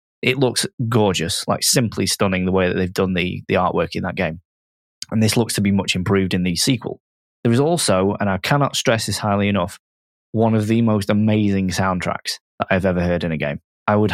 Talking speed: 220 wpm